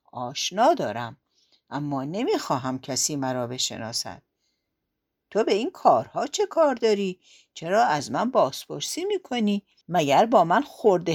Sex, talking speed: female, 125 wpm